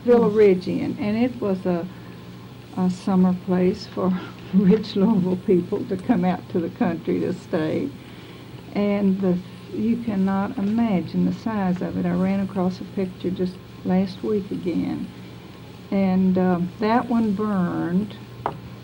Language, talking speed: English, 140 wpm